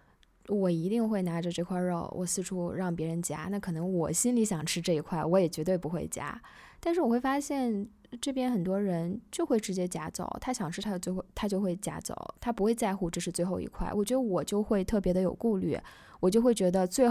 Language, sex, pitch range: Chinese, female, 180-250 Hz